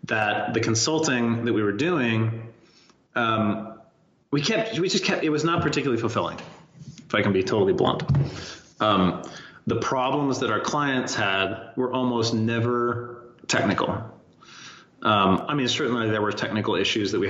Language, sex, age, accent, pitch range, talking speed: English, male, 30-49, American, 110-125 Hz, 155 wpm